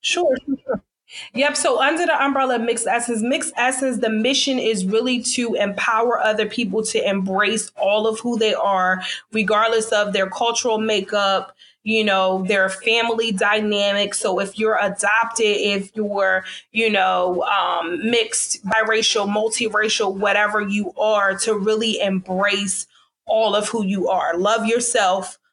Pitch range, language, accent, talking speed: 195-230 Hz, English, American, 145 wpm